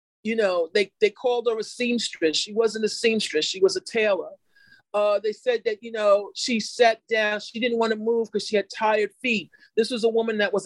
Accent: American